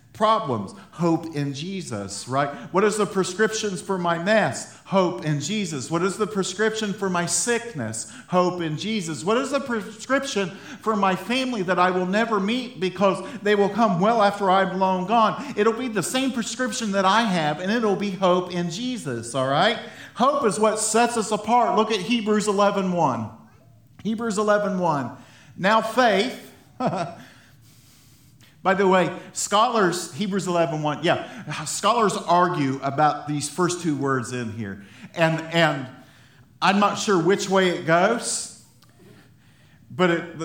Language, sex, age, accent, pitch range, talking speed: English, male, 50-69, American, 140-205 Hz, 155 wpm